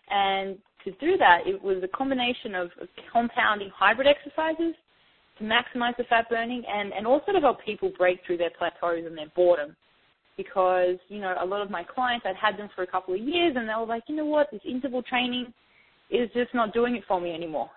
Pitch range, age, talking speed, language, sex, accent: 180-240 Hz, 20-39, 215 wpm, English, female, Australian